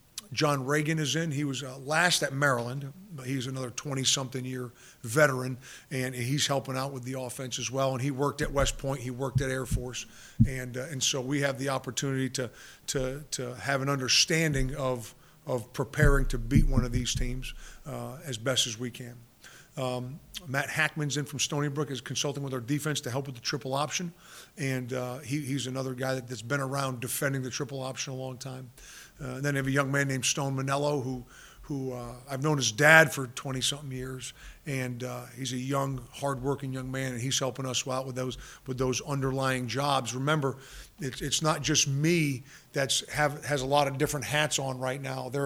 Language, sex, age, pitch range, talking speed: English, male, 50-69, 130-145 Hz, 210 wpm